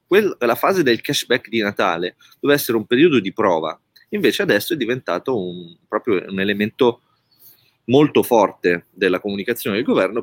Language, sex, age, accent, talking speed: Italian, male, 30-49, native, 145 wpm